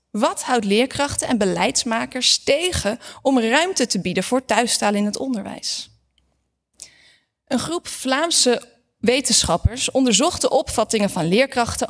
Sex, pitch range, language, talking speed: female, 200-255 Hz, Dutch, 120 wpm